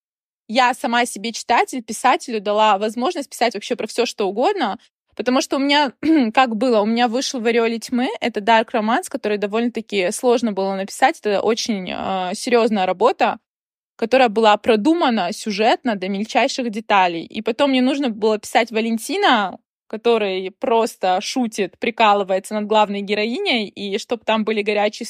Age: 20-39